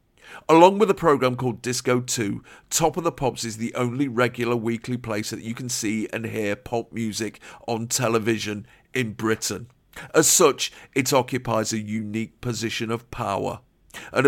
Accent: British